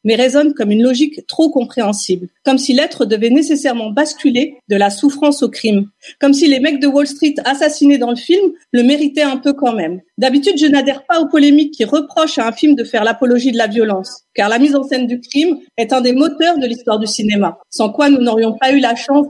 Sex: female